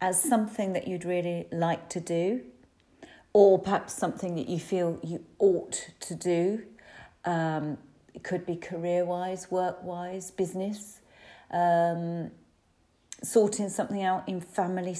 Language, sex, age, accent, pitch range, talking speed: English, female, 40-59, British, 170-205 Hz, 125 wpm